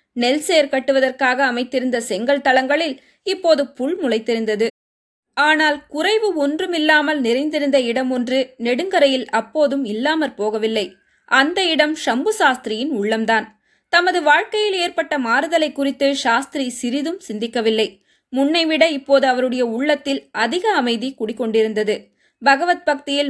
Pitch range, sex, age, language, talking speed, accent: 230-300 Hz, female, 20-39, Tamil, 100 wpm, native